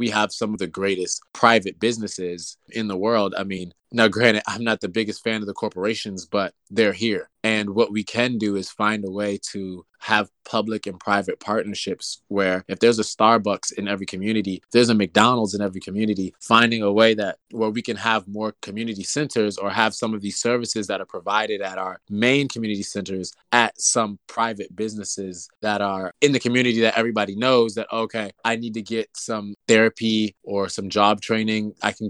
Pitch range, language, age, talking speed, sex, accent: 100-115 Hz, English, 20-39, 200 wpm, male, American